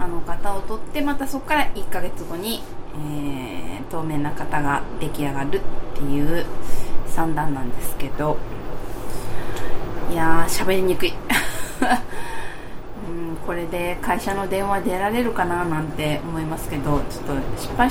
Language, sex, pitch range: Japanese, female, 150-230 Hz